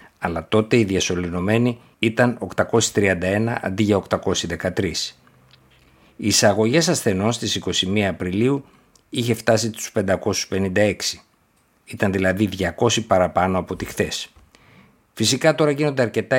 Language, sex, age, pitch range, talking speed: Greek, male, 50-69, 95-115 Hz, 110 wpm